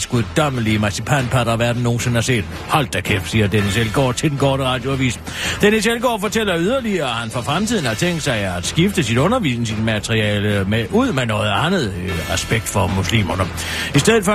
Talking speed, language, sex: 185 wpm, Danish, male